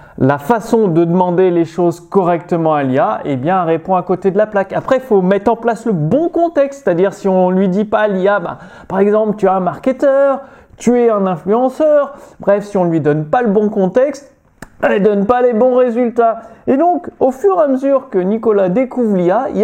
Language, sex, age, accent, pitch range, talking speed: French, male, 30-49, French, 155-235 Hz, 230 wpm